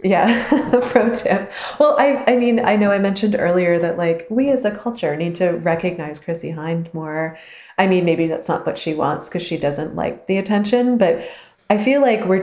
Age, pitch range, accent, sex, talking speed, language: 20-39, 155-195 Hz, American, female, 210 wpm, English